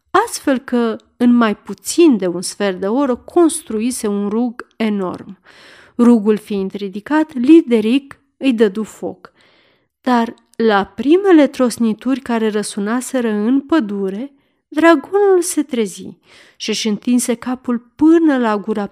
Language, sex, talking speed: Romanian, female, 125 wpm